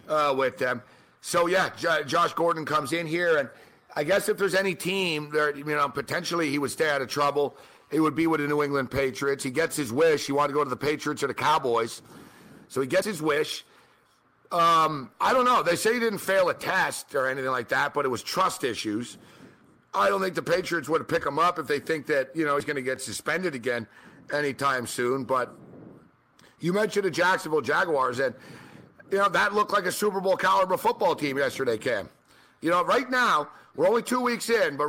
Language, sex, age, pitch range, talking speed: English, male, 50-69, 140-180 Hz, 220 wpm